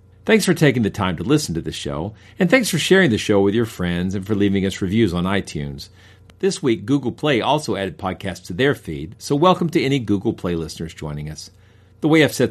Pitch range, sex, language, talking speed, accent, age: 90-140 Hz, male, English, 235 wpm, American, 50-69